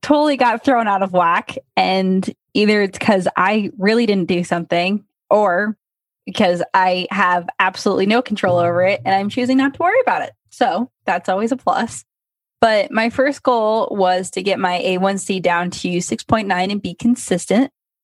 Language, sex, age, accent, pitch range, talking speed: English, female, 10-29, American, 175-225 Hz, 175 wpm